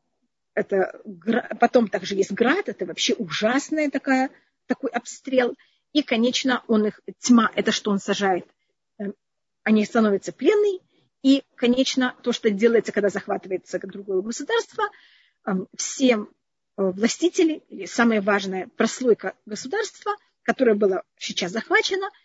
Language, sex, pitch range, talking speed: Russian, female, 205-270 Hz, 115 wpm